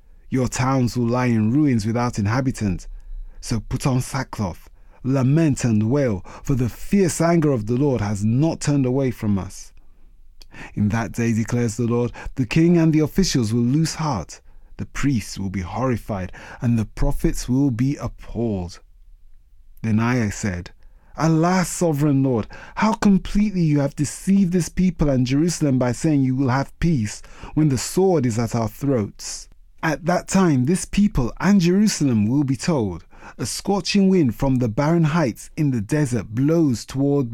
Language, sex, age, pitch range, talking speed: English, male, 30-49, 110-155 Hz, 165 wpm